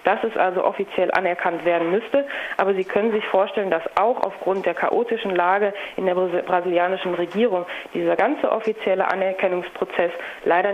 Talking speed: 150 wpm